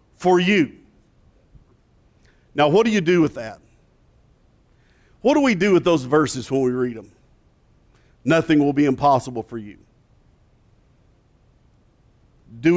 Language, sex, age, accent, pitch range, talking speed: English, male, 50-69, American, 155-210 Hz, 125 wpm